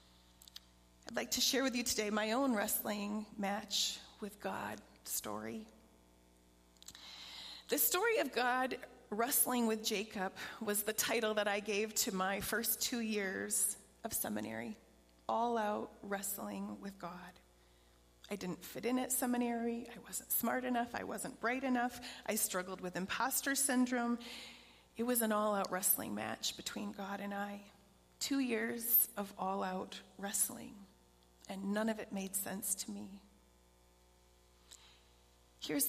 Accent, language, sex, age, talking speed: American, English, female, 30-49, 140 wpm